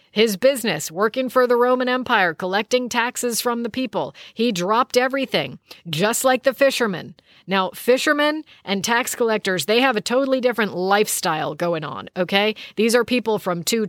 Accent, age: American, 40-59